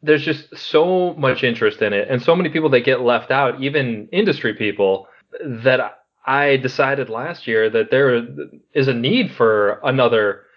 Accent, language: American, English